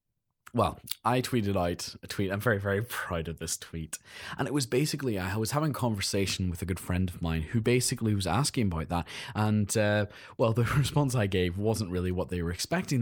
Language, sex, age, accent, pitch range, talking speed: English, male, 20-39, British, 100-135 Hz, 215 wpm